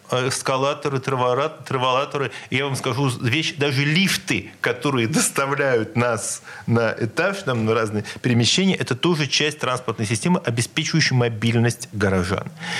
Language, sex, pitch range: Russian, male, 115-155 Hz